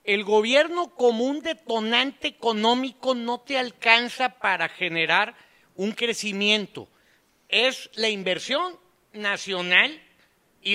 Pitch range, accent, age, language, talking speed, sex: 180-240 Hz, Mexican, 50-69, Spanish, 100 wpm, male